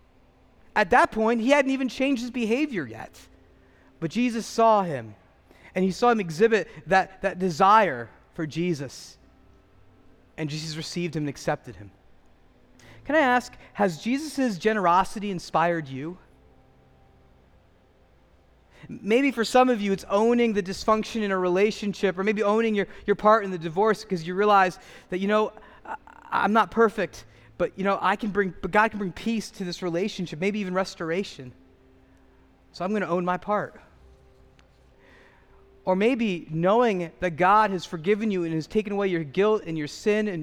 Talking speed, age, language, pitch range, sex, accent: 165 wpm, 30-49, English, 165-225 Hz, male, American